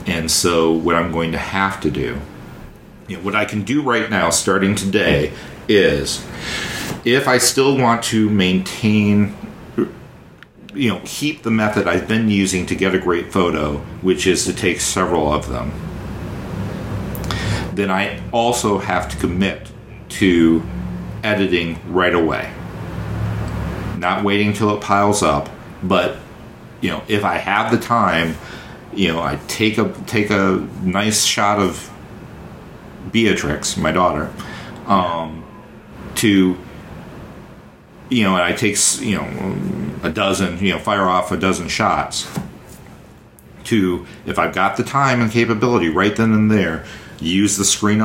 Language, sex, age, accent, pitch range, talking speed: English, male, 50-69, American, 85-105 Hz, 145 wpm